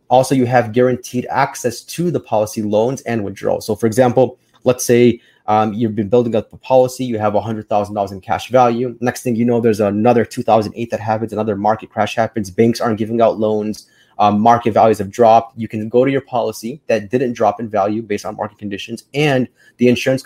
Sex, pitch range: male, 110-125 Hz